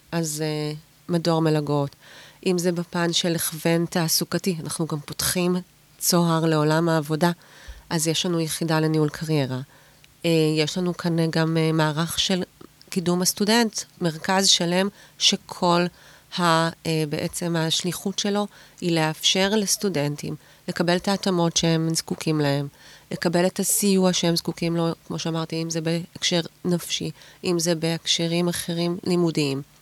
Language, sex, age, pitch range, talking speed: Hebrew, female, 30-49, 160-190 Hz, 125 wpm